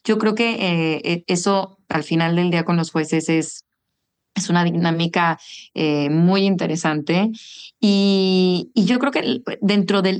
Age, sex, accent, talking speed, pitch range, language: 30-49, female, Mexican, 155 wpm, 160-190 Hz, English